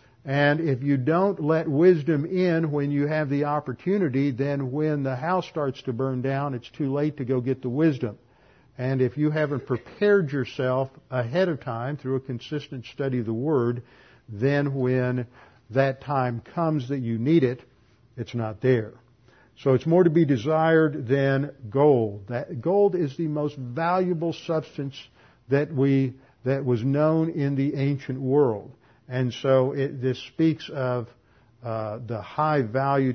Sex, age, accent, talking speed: male, 50-69, American, 160 wpm